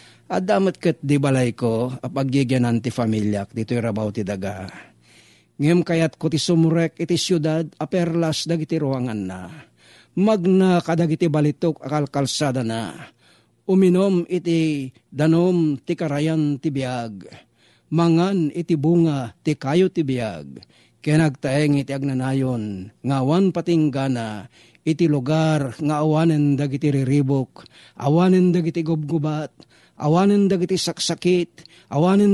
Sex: male